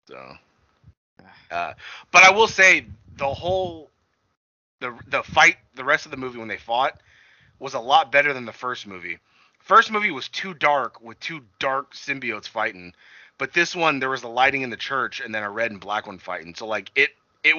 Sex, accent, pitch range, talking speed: male, American, 110-140 Hz, 205 wpm